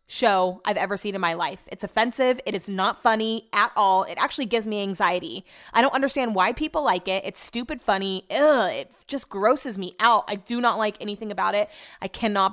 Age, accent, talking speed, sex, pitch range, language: 20-39, American, 210 wpm, female, 200-255 Hz, English